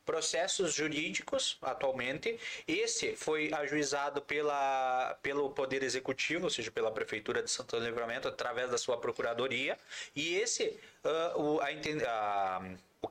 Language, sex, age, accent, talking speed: Portuguese, male, 20-39, Brazilian, 135 wpm